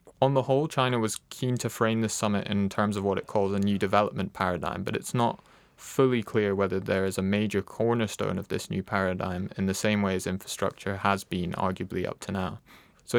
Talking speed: 220 wpm